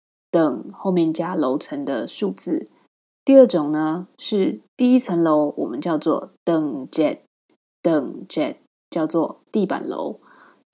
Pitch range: 185-230 Hz